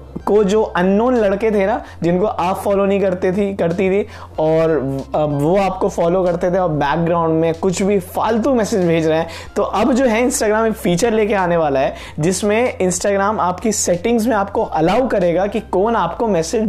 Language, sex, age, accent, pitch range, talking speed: Hindi, male, 20-39, native, 175-220 Hz, 190 wpm